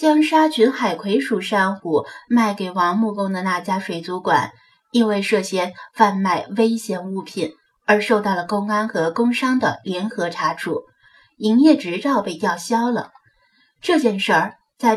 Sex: female